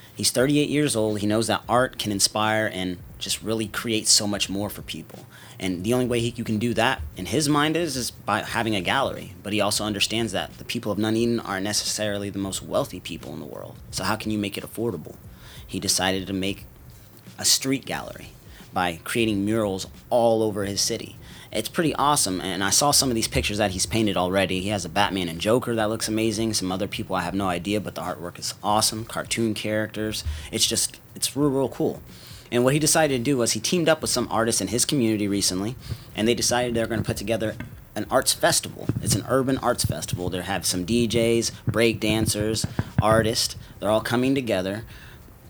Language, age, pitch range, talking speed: English, 30-49, 100-120 Hz, 215 wpm